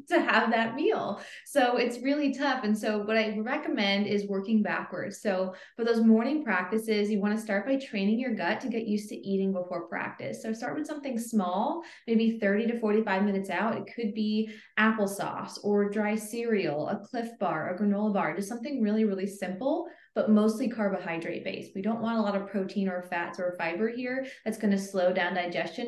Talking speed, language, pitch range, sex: 200 wpm, English, 180-220 Hz, female